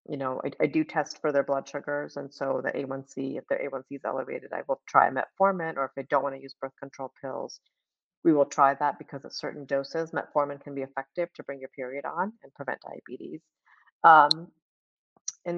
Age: 40-59